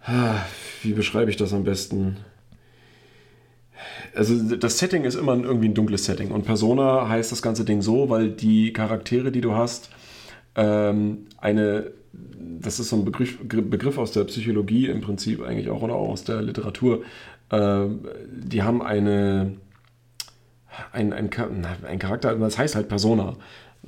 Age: 40-59